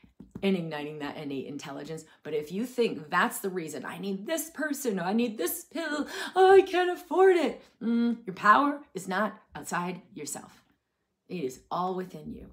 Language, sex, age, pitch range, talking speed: English, female, 30-49, 160-220 Hz, 175 wpm